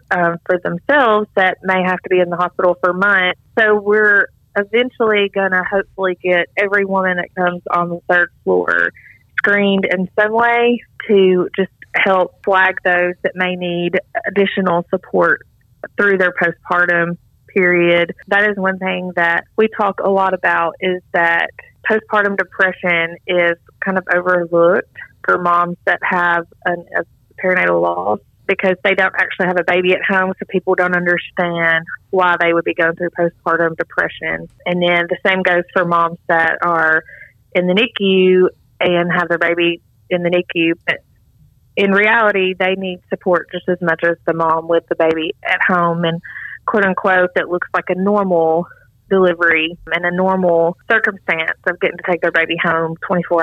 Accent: American